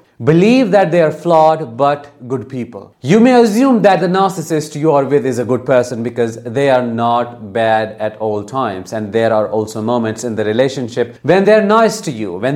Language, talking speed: English, 205 wpm